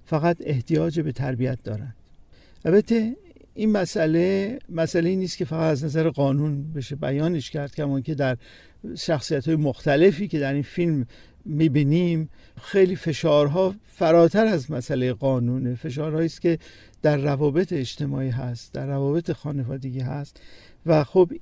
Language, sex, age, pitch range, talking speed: Persian, male, 50-69, 140-175 Hz, 135 wpm